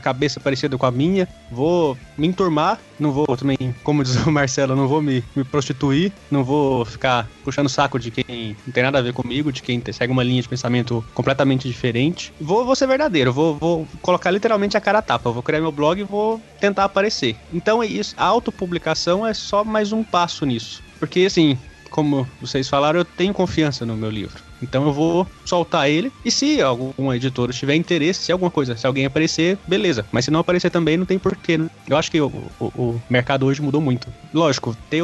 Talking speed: 210 wpm